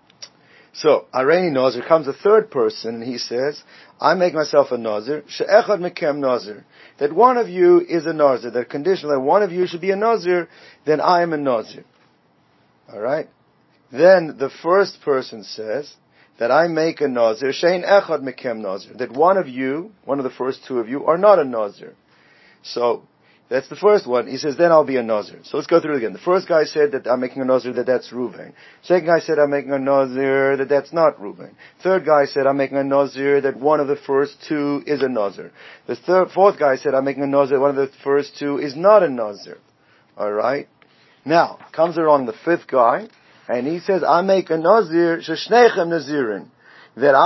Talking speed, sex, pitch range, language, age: 205 wpm, male, 135-175 Hz, English, 50-69